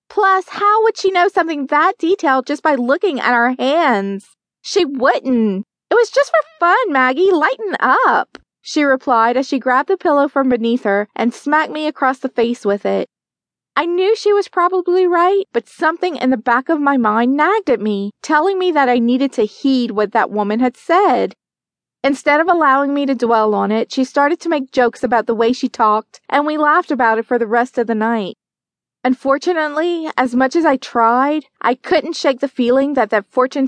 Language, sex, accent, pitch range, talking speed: English, female, American, 240-310 Hz, 205 wpm